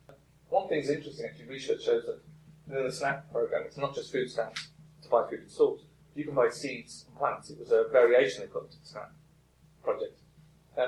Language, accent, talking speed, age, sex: English, British, 215 wpm, 30-49, male